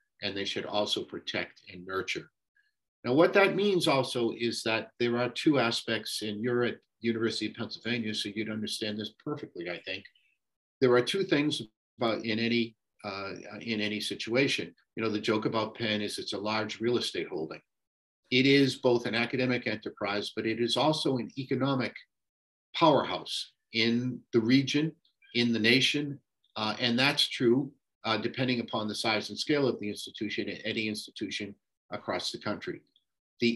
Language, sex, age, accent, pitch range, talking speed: English, male, 50-69, American, 110-130 Hz, 170 wpm